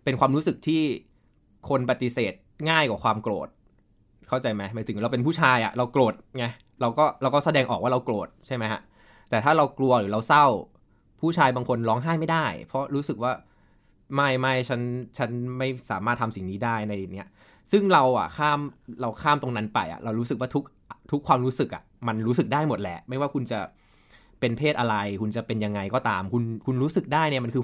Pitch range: 105-130 Hz